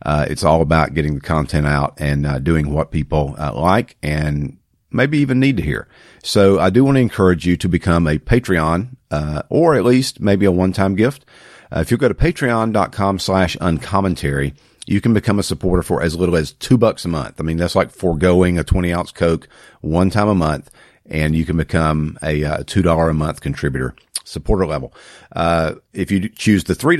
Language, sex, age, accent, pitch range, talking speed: English, male, 50-69, American, 80-100 Hz, 200 wpm